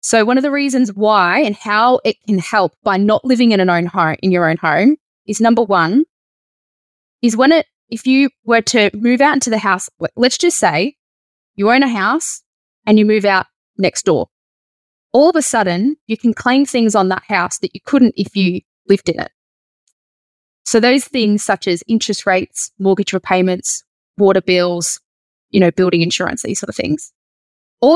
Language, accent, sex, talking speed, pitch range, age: English, Australian, female, 190 wpm, 195-260 Hz, 10-29